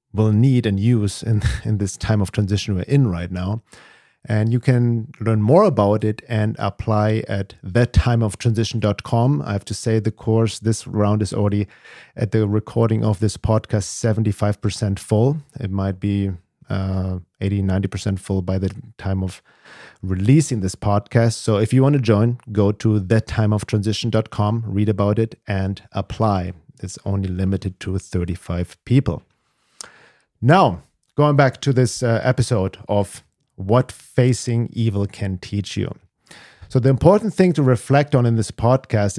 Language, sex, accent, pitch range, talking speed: English, male, German, 100-120 Hz, 155 wpm